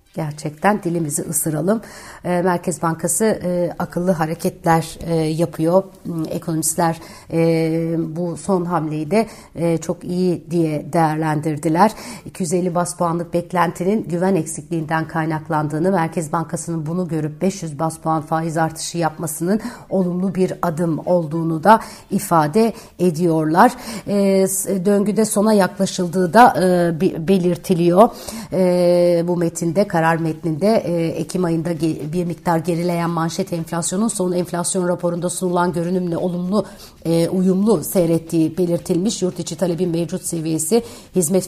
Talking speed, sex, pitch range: 105 wpm, female, 165-190 Hz